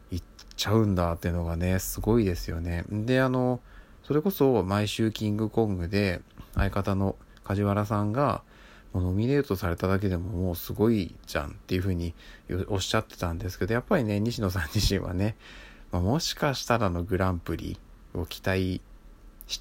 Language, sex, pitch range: Japanese, male, 85-105 Hz